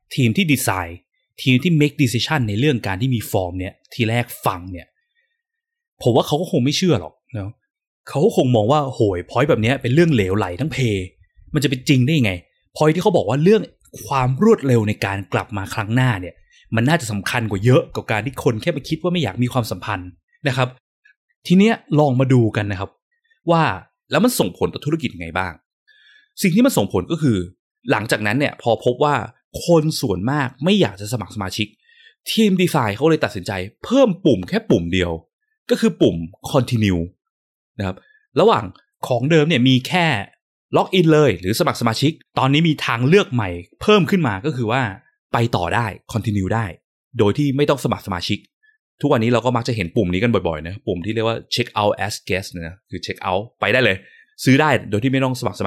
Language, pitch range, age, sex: Thai, 105-155 Hz, 20-39, male